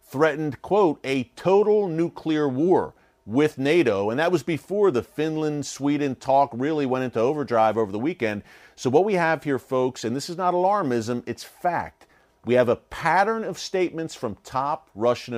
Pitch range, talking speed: 120-155 Hz, 170 wpm